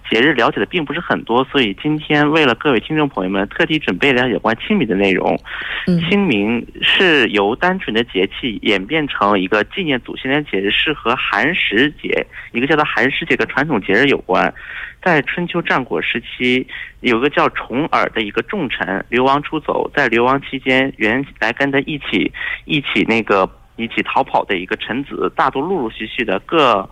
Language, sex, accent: Korean, male, Chinese